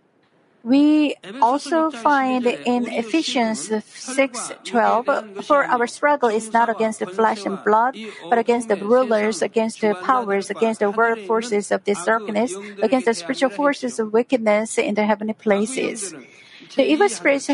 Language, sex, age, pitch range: Korean, female, 50-69, 215-275 Hz